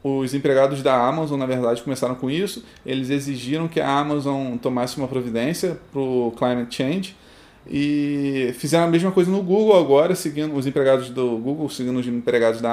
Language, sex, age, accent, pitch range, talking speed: Portuguese, male, 20-39, Brazilian, 120-155 Hz, 180 wpm